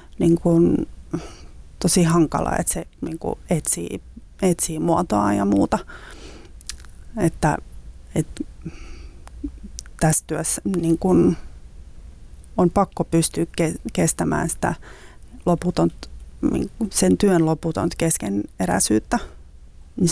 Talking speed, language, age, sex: 85 wpm, Finnish, 30-49, female